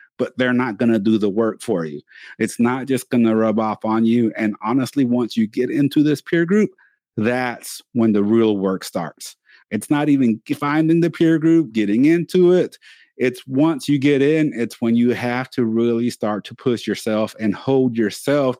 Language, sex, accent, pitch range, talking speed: English, male, American, 115-140 Hz, 195 wpm